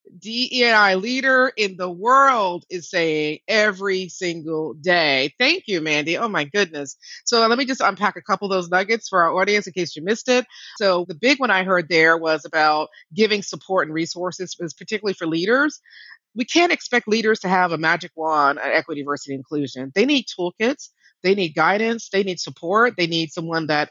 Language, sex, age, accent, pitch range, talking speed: English, female, 40-59, American, 155-205 Hz, 195 wpm